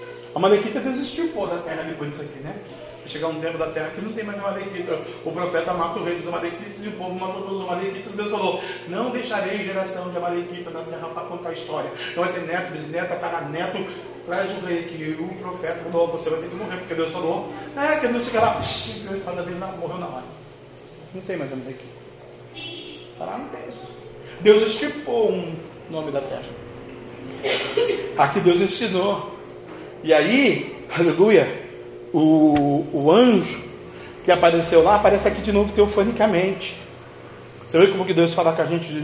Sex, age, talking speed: male, 40-59, 190 wpm